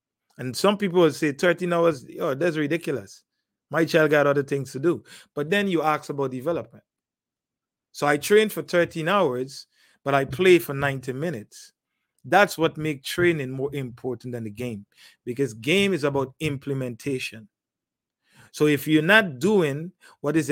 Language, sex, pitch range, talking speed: English, male, 135-175 Hz, 165 wpm